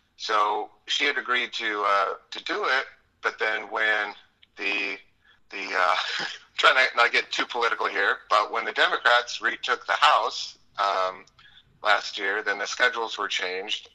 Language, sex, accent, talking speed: English, male, American, 165 wpm